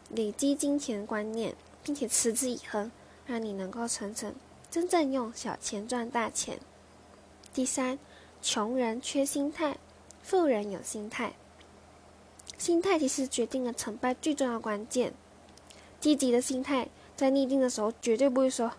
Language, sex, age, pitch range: Chinese, female, 10-29, 215-270 Hz